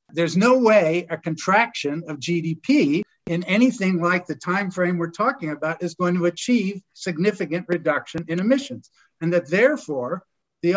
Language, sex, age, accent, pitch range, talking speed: English, male, 60-79, American, 150-190 Hz, 155 wpm